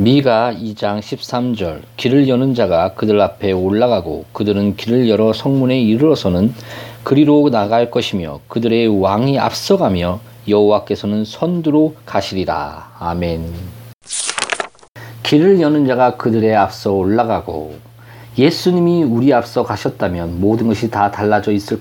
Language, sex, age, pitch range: Korean, male, 40-59, 110-150 Hz